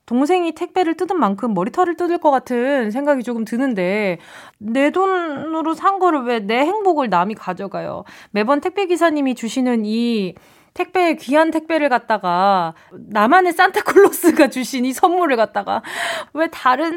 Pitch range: 220-335 Hz